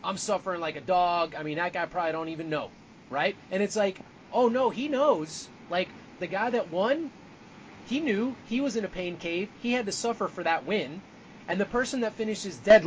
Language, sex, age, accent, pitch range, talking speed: English, male, 30-49, American, 165-215 Hz, 220 wpm